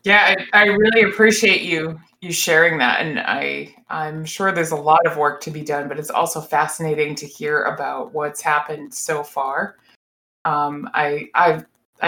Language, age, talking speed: English, 20-39, 175 wpm